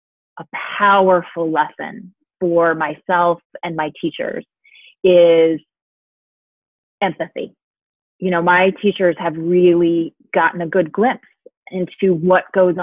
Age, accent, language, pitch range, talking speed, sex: 30-49, American, English, 165-190 Hz, 110 wpm, female